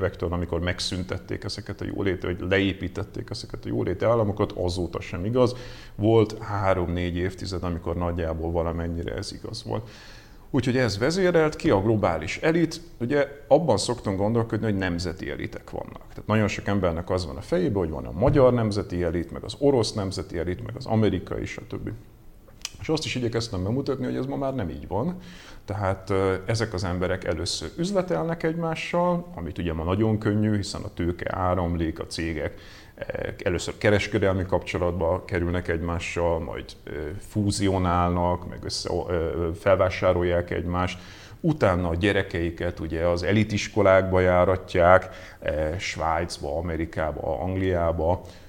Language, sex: Hungarian, male